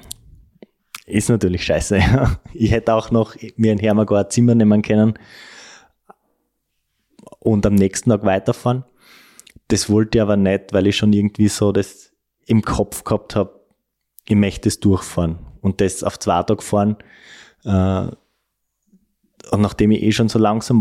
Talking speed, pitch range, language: 150 wpm, 95-110 Hz, German